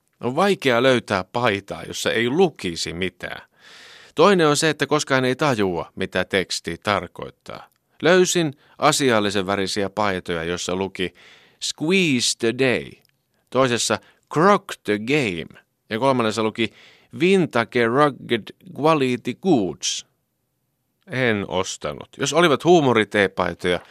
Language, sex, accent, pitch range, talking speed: Finnish, male, native, 95-145 Hz, 110 wpm